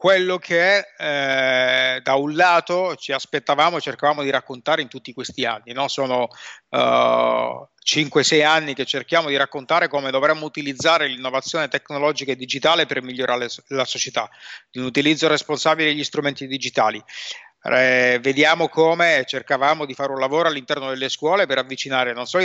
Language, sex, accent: Italian, male, native